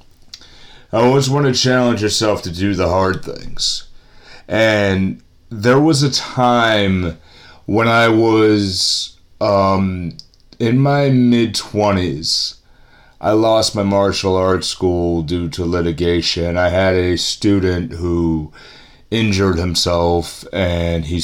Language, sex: English, male